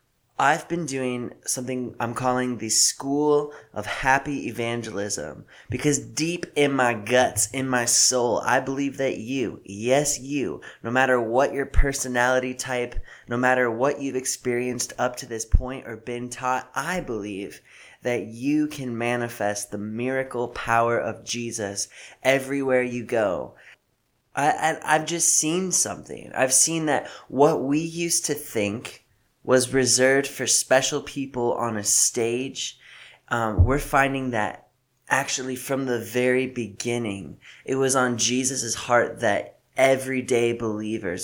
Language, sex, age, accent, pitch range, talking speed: English, male, 20-39, American, 115-135 Hz, 135 wpm